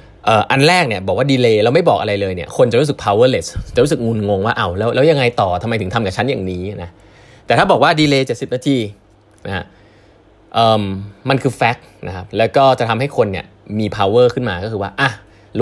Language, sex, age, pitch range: Thai, male, 20-39, 100-135 Hz